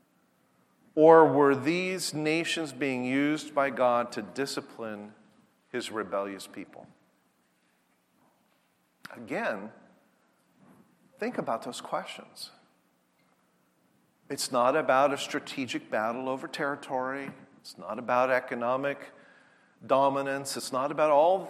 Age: 40-59